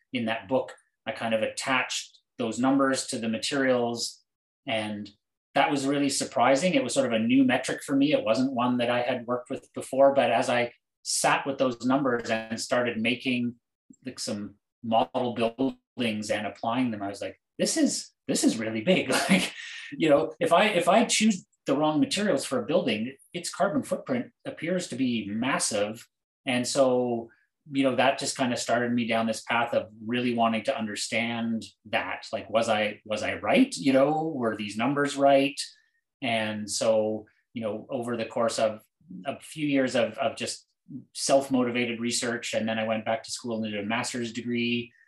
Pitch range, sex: 110-135 Hz, male